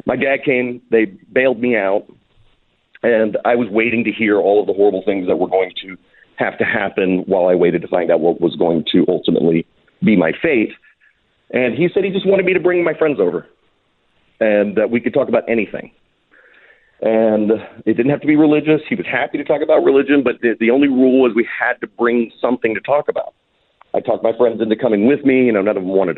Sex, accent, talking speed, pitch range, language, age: male, American, 230 wpm, 110-145 Hz, English, 40-59